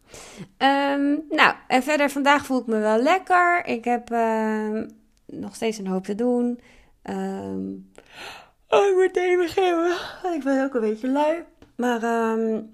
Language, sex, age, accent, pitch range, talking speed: Dutch, female, 30-49, Dutch, 170-230 Hz, 155 wpm